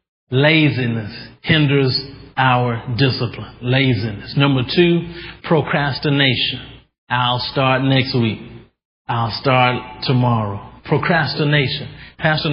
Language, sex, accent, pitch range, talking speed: English, male, American, 120-145 Hz, 80 wpm